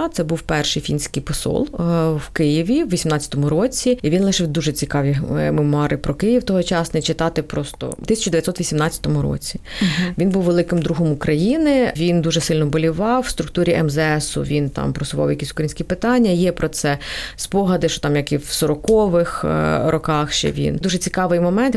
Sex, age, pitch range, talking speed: female, 30-49, 155-220 Hz, 160 wpm